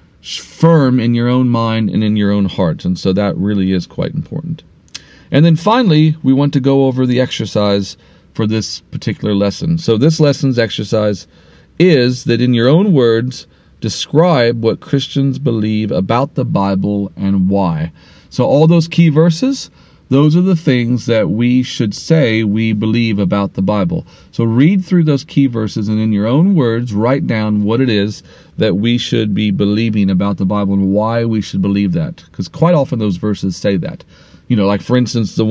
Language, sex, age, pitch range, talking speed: English, male, 40-59, 100-135 Hz, 190 wpm